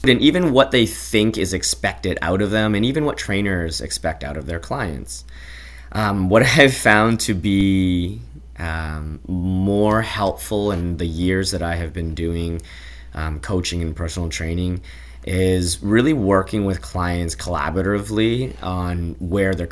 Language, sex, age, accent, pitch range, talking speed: English, male, 20-39, American, 80-100 Hz, 155 wpm